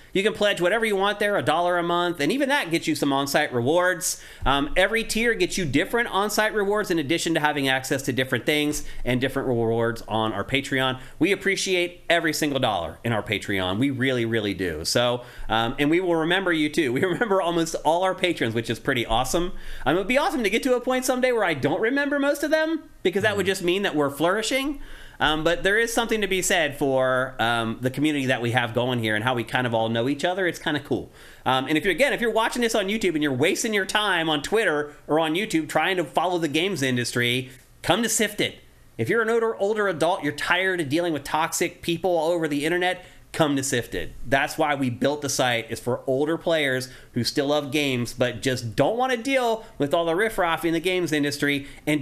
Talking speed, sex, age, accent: 235 wpm, male, 30-49, American